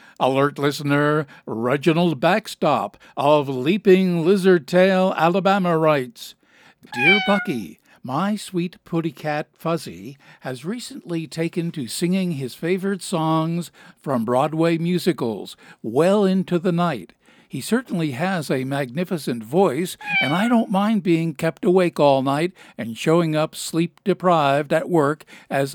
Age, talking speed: 60-79, 125 wpm